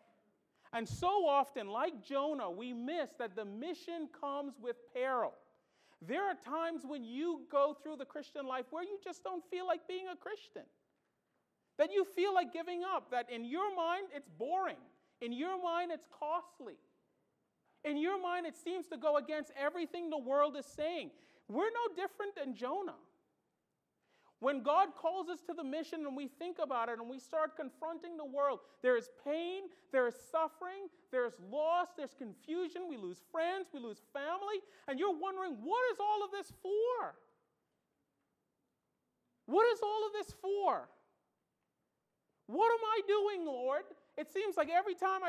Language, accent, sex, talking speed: English, American, male, 170 wpm